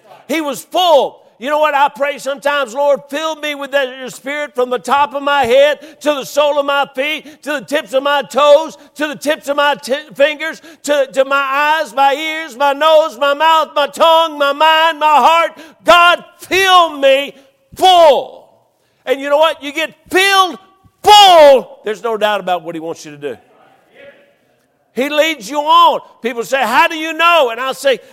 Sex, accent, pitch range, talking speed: male, American, 270-320 Hz, 190 wpm